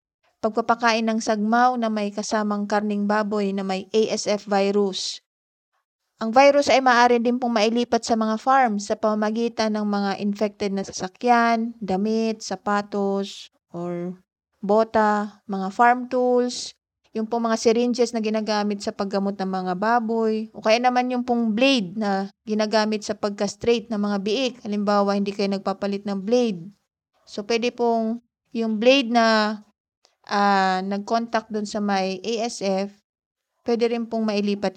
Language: Filipino